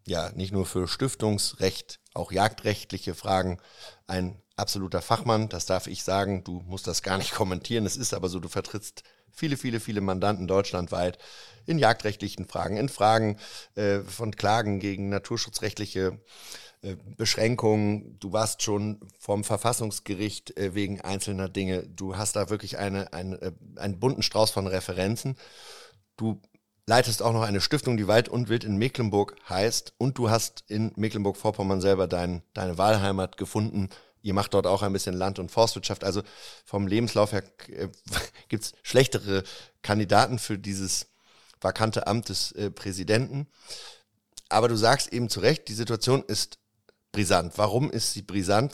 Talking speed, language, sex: 150 wpm, German, male